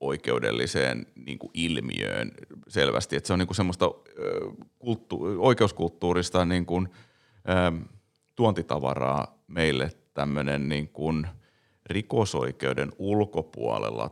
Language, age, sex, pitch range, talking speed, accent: Finnish, 30-49, male, 70-95 Hz, 100 wpm, native